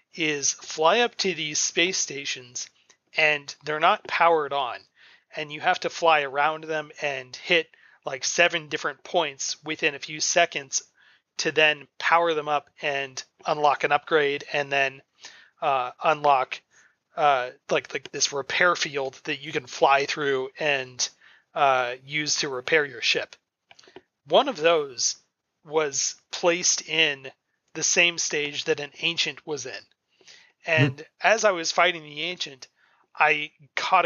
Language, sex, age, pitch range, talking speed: English, male, 30-49, 145-170 Hz, 145 wpm